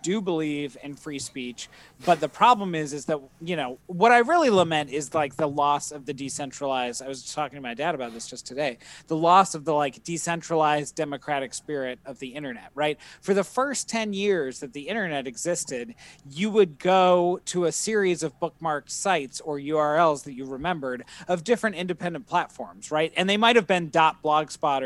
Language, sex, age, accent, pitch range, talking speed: English, male, 30-49, American, 140-175 Hz, 195 wpm